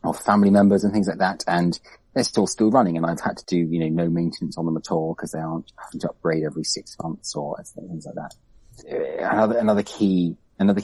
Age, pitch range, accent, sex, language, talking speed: 30-49, 90-115 Hz, British, male, English, 235 wpm